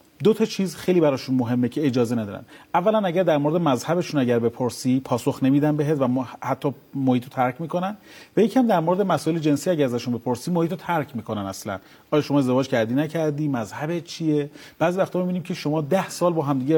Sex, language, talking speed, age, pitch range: male, Persian, 200 wpm, 40-59, 135-185 Hz